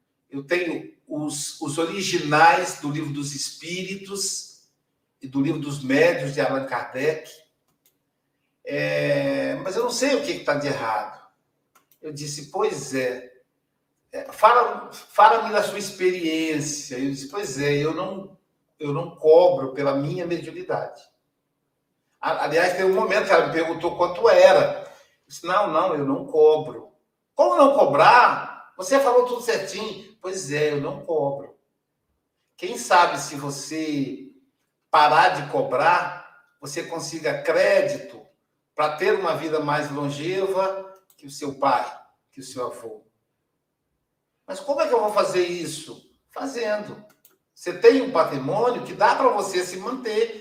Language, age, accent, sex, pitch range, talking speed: Portuguese, 60-79, Brazilian, male, 150-215 Hz, 145 wpm